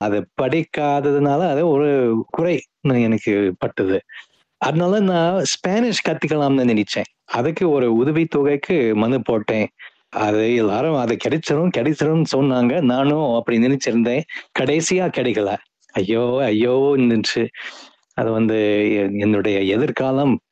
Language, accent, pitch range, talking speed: Tamil, native, 125-165 Hz, 110 wpm